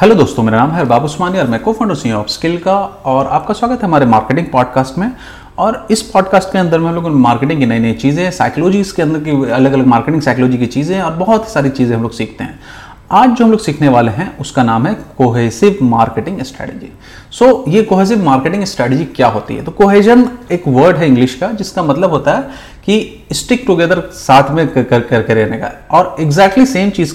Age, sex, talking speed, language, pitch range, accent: 30-49, male, 215 wpm, Hindi, 130-200 Hz, native